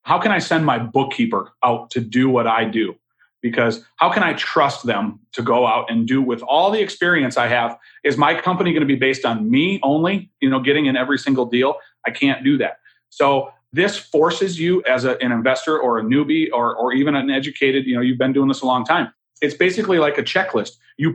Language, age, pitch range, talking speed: English, 40-59, 130-175 Hz, 225 wpm